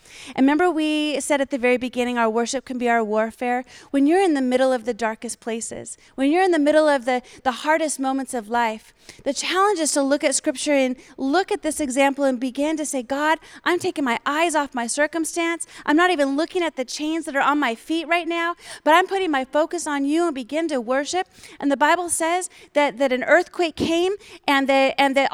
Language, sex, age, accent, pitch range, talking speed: English, female, 30-49, American, 255-315 Hz, 230 wpm